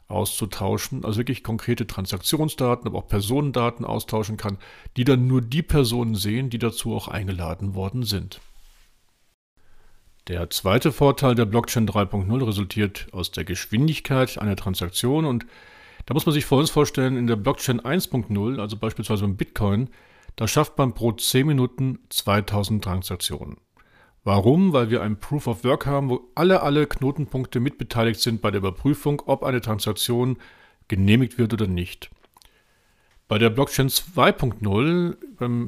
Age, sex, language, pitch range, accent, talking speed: 50-69, male, German, 100-130 Hz, German, 145 wpm